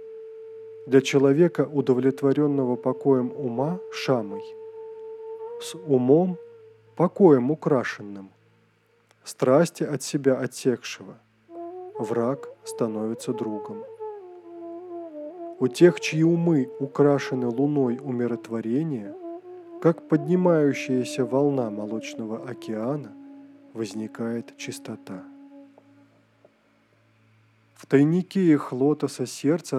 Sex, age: male, 20-39